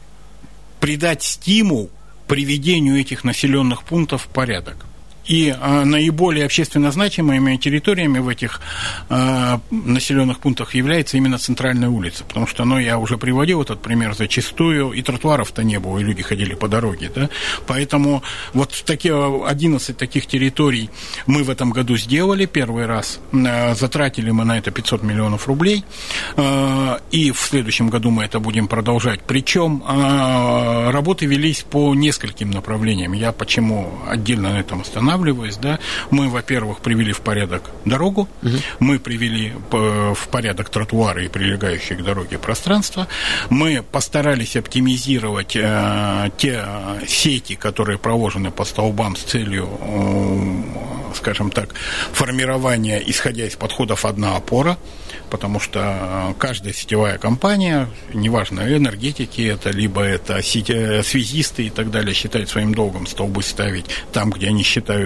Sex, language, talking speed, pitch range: male, Russian, 135 wpm, 105-140 Hz